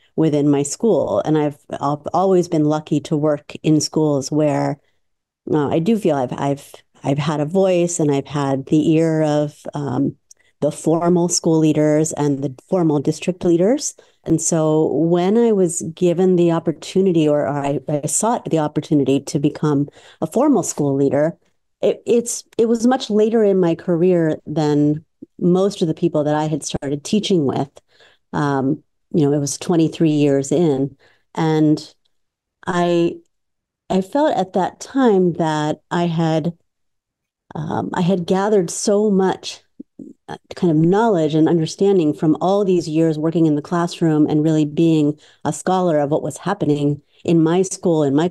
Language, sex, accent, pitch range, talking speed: English, female, American, 150-185 Hz, 165 wpm